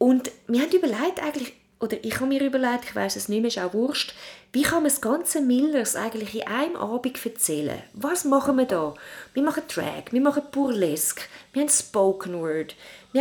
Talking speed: 200 wpm